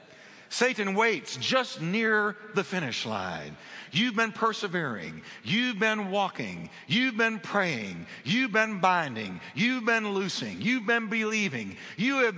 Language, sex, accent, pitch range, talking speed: English, male, American, 155-215 Hz, 130 wpm